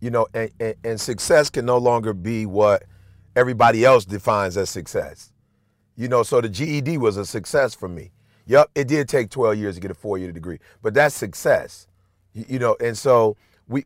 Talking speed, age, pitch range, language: 200 wpm, 40-59, 100-130 Hz, English